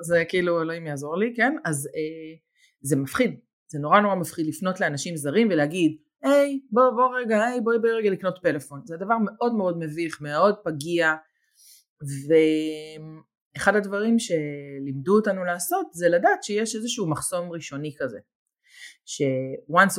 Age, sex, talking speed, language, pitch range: 30-49, female, 155 wpm, Hebrew, 150-230 Hz